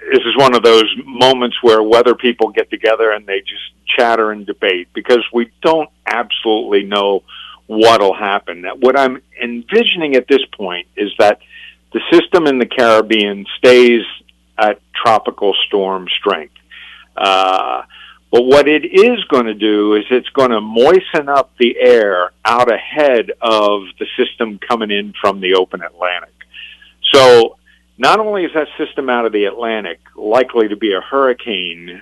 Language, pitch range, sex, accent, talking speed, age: English, 105-155 Hz, male, American, 155 wpm, 50-69